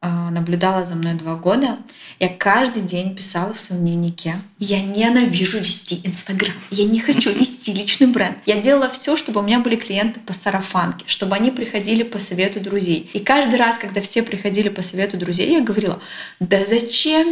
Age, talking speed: 20-39, 175 wpm